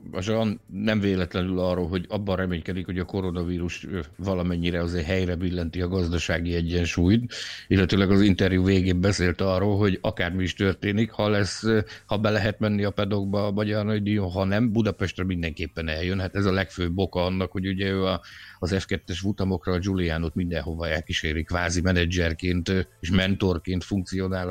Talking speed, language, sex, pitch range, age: 155 wpm, Hungarian, male, 90-105 Hz, 60-79